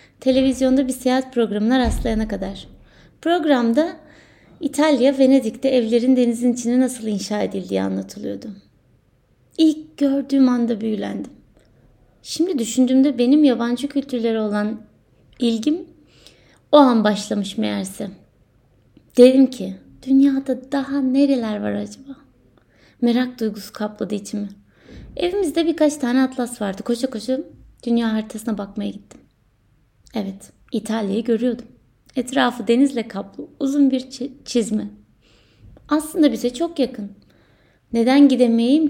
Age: 20-39